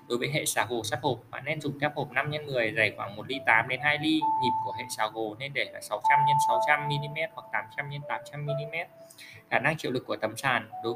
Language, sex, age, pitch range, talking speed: Vietnamese, male, 20-39, 125-170 Hz, 240 wpm